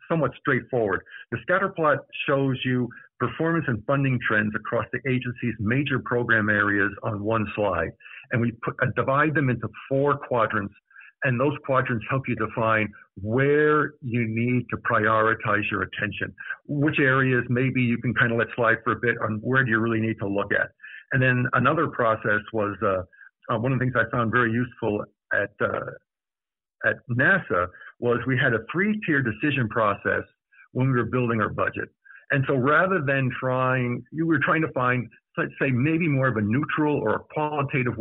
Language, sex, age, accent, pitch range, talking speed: English, male, 60-79, American, 115-135 Hz, 180 wpm